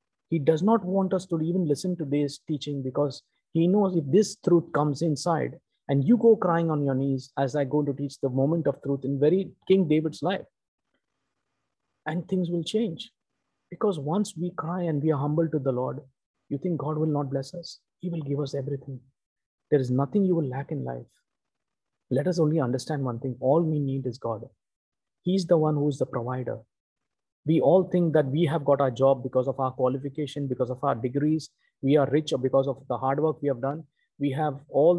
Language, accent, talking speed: English, Indian, 215 wpm